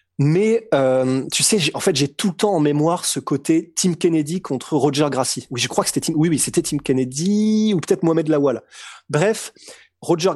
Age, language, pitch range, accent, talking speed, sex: 30-49, French, 140-195 Hz, French, 215 wpm, male